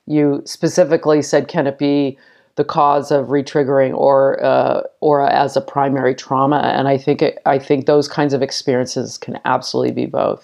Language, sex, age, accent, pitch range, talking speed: English, female, 40-59, American, 135-150 Hz, 180 wpm